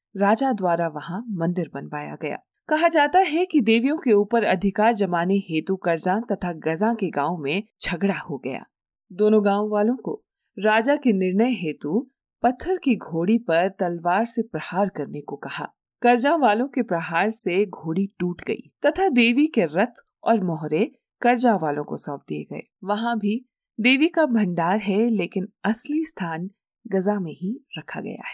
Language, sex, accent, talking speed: Hindi, female, native, 165 wpm